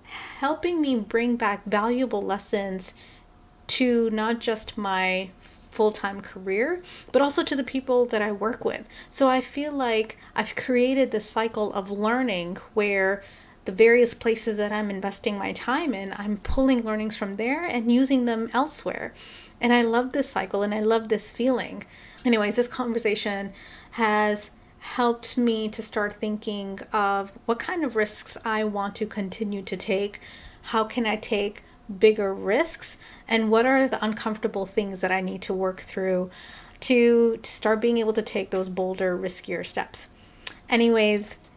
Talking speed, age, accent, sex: 160 wpm, 30-49, American, female